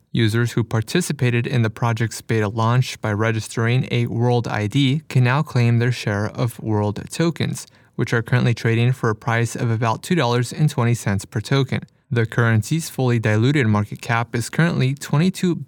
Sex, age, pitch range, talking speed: male, 20-39, 115-140 Hz, 160 wpm